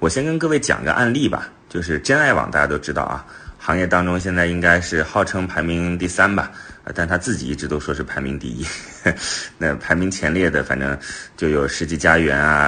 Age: 30-49